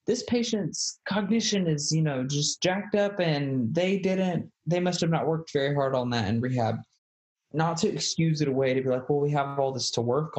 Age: 20-39